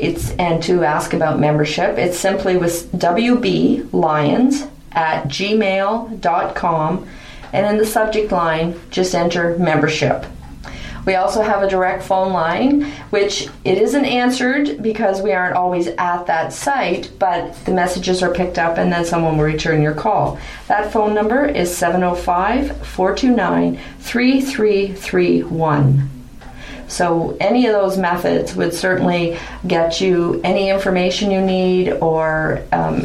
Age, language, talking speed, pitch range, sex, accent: 40-59, English, 130 wpm, 170-200 Hz, female, American